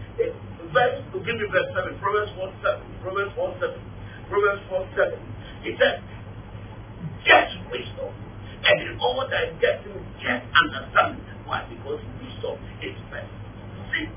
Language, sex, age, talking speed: English, male, 50-69, 125 wpm